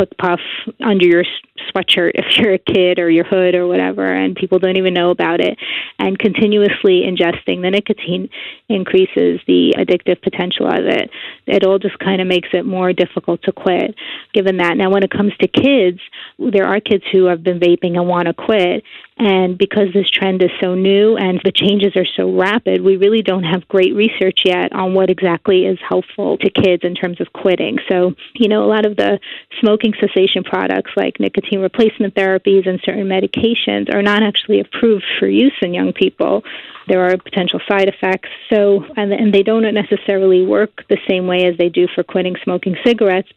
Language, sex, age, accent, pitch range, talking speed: English, female, 30-49, American, 180-205 Hz, 195 wpm